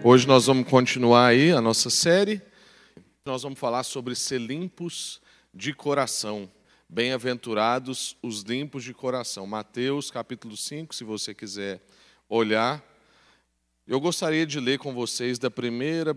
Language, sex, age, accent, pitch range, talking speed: Portuguese, male, 40-59, Brazilian, 120-165 Hz, 135 wpm